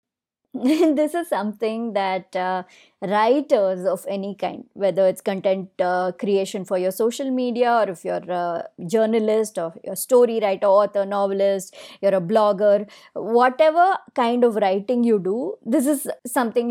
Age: 20-39